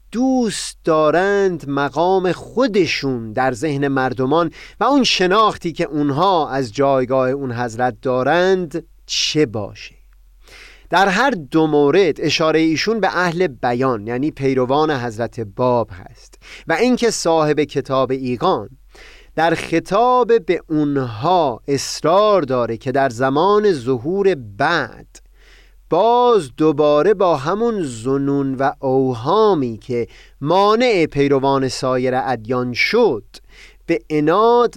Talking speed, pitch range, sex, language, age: 110 wpm, 130-185 Hz, male, Persian, 30-49